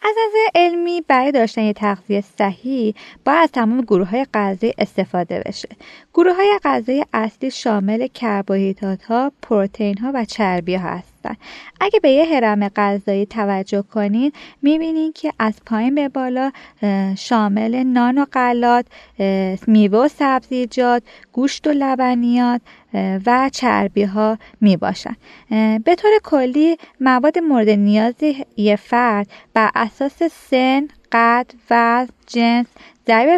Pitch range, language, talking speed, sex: 210-280 Hz, Persian, 125 wpm, female